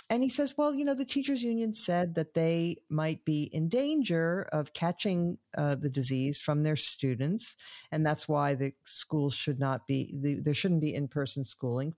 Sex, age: female, 50-69